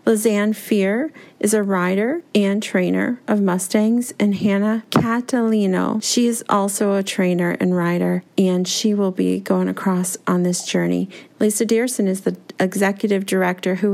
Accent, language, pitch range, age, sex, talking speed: American, English, 195-230 Hz, 40-59, female, 150 wpm